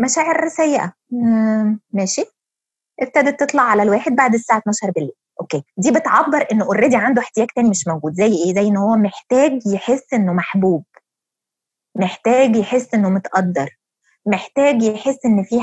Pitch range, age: 195-270 Hz, 20-39